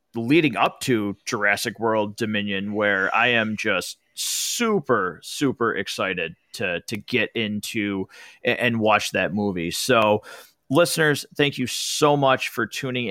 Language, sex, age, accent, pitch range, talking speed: English, male, 30-49, American, 115-160 Hz, 135 wpm